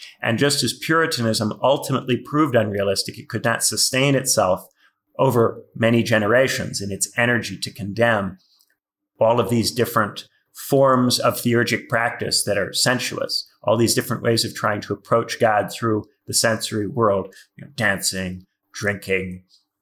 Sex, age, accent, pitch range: male, 30-49, American, 100-125 Hz